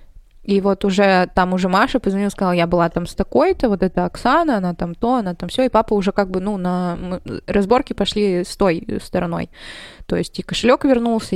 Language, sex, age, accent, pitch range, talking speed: Russian, female, 20-39, native, 185-220 Hz, 205 wpm